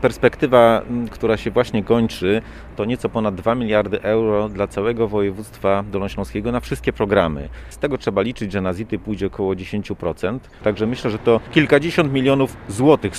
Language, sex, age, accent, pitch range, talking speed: Polish, male, 40-59, native, 95-115 Hz, 160 wpm